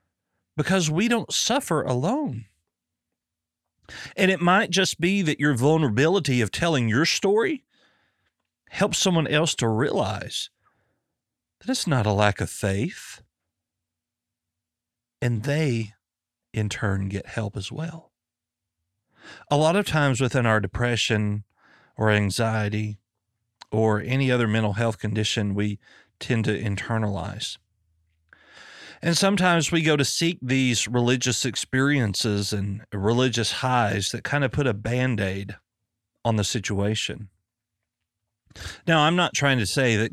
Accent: American